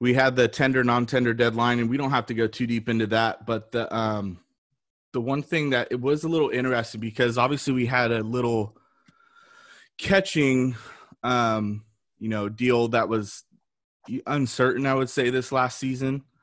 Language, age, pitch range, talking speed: English, 20-39, 110-130 Hz, 175 wpm